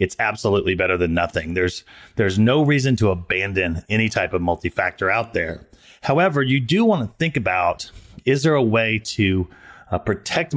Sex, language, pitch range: male, English, 95-115 Hz